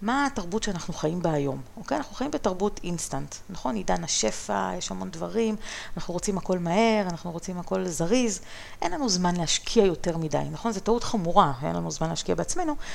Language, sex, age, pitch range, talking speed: Hebrew, female, 30-49, 155-210 Hz, 185 wpm